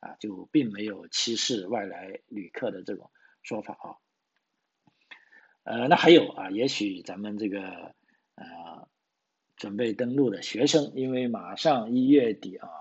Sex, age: male, 50-69